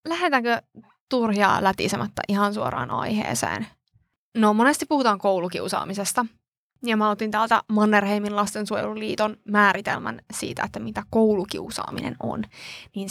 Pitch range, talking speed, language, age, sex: 195-220 Hz, 105 wpm, Finnish, 20-39, female